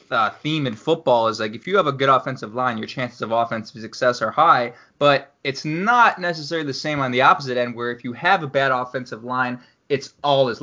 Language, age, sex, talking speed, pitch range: English, 20-39, male, 230 wpm, 120-140 Hz